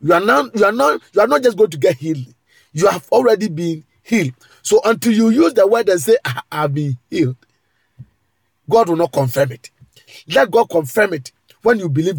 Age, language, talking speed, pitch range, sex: 50-69, English, 205 wpm, 135-190 Hz, male